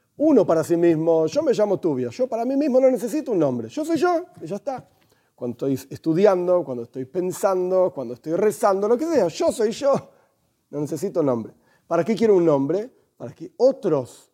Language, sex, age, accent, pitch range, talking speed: Spanish, male, 40-59, Argentinian, 155-225 Hz, 205 wpm